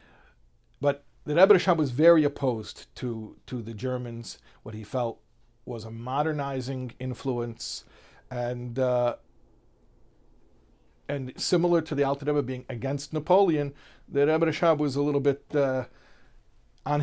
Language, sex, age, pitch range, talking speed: English, male, 50-69, 110-140 Hz, 130 wpm